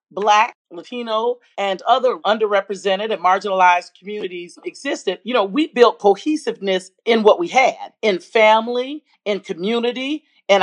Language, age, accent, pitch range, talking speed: English, 40-59, American, 200-265 Hz, 130 wpm